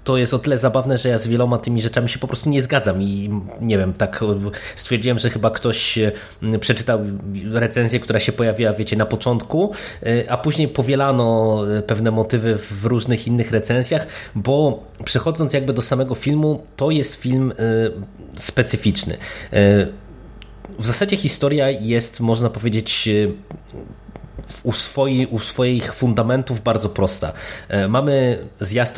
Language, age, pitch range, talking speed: Polish, 30-49, 105-125 Hz, 135 wpm